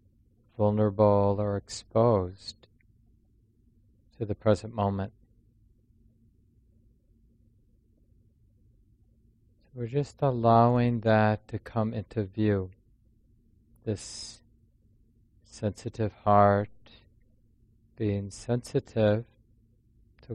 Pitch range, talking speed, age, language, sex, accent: 105-115 Hz, 60 wpm, 40-59, English, male, American